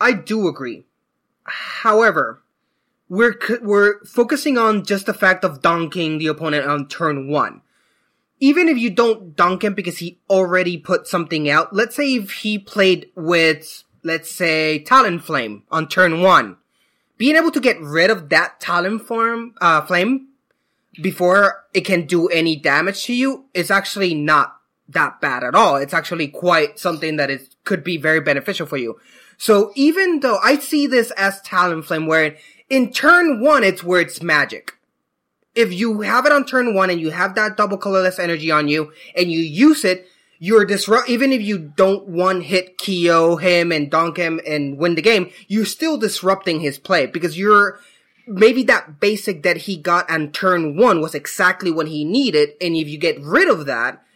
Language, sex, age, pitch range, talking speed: English, male, 20-39, 165-225 Hz, 180 wpm